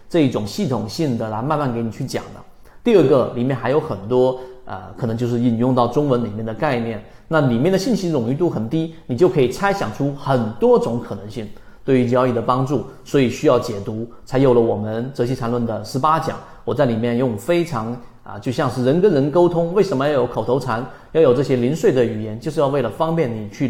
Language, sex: Chinese, male